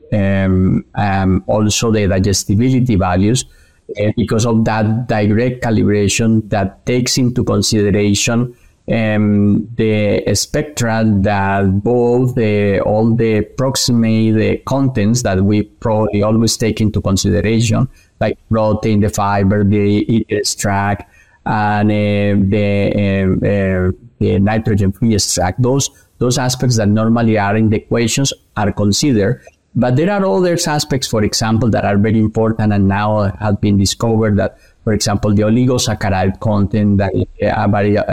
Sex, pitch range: male, 100-120 Hz